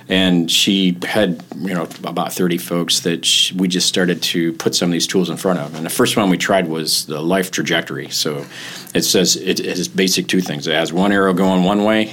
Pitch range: 80-95 Hz